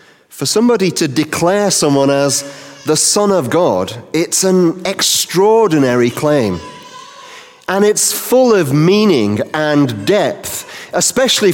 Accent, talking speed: British, 115 wpm